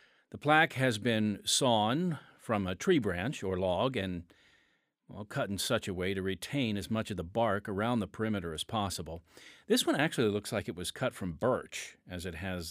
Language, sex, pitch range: English, male, 100-135 Hz